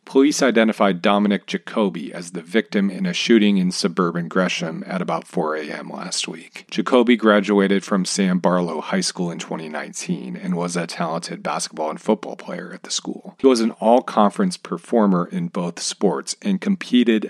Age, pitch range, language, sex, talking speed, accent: 40-59, 90-115 Hz, English, male, 170 wpm, American